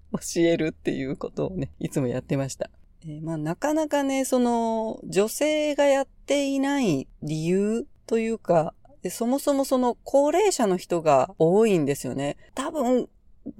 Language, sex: Japanese, female